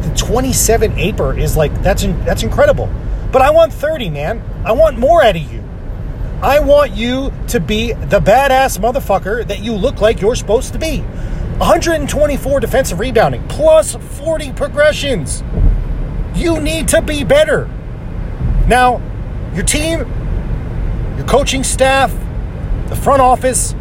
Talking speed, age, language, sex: 135 wpm, 40-59, English, male